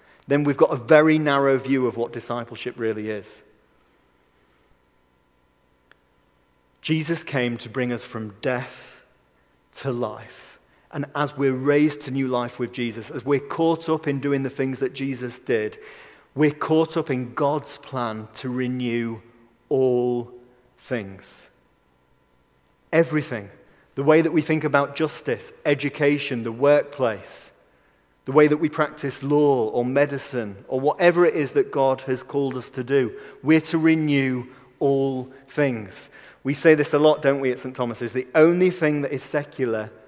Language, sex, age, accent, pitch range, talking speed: English, male, 40-59, British, 120-150 Hz, 155 wpm